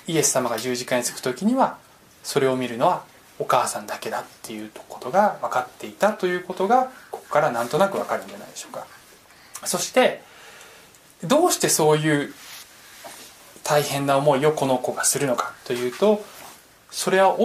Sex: male